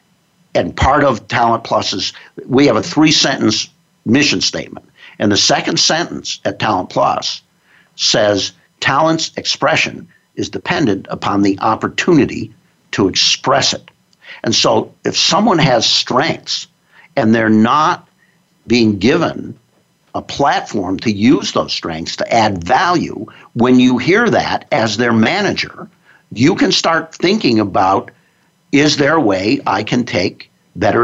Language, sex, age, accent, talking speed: English, male, 60-79, American, 135 wpm